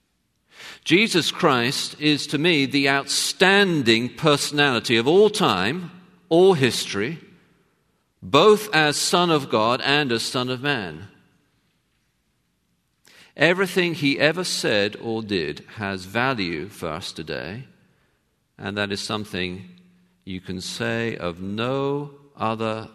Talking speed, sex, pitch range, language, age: 115 wpm, male, 100-140 Hz, English, 50-69